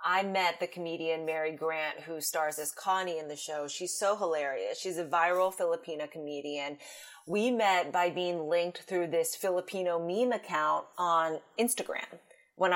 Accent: American